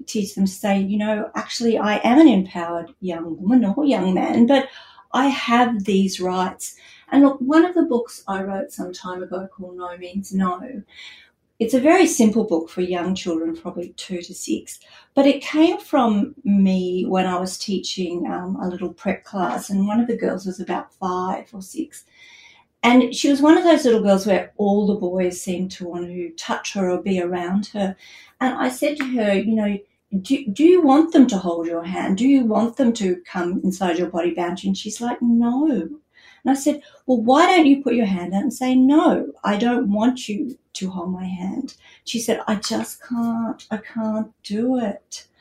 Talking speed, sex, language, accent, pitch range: 205 wpm, female, English, Australian, 185-250 Hz